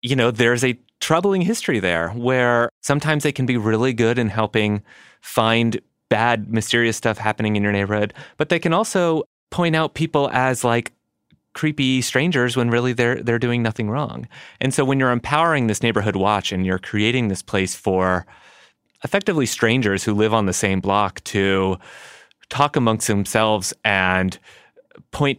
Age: 30-49